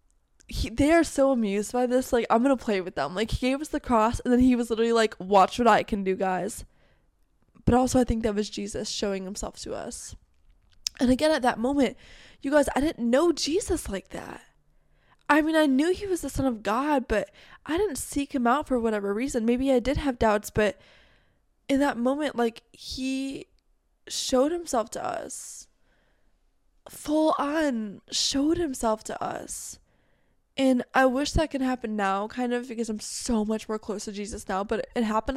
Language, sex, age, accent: English, female, 20-39, American